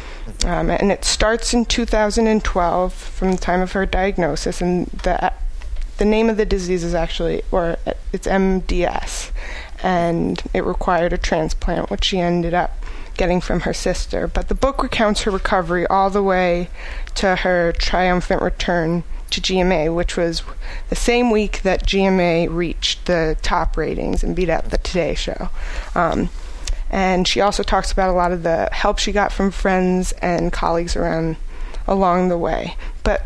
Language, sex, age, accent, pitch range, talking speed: English, female, 20-39, American, 175-200 Hz, 165 wpm